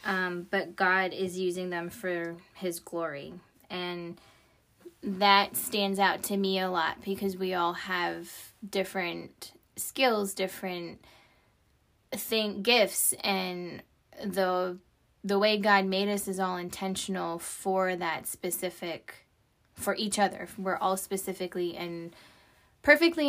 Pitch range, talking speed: 180-200 Hz, 120 wpm